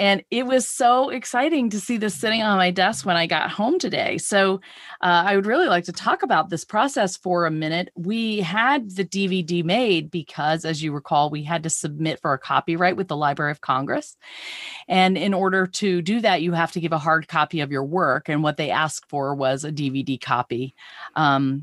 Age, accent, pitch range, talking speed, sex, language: 40-59, American, 155-200 Hz, 215 wpm, female, English